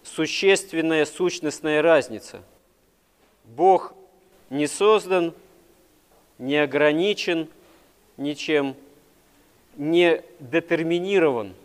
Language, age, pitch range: Russian, 40-59, 140-175 Hz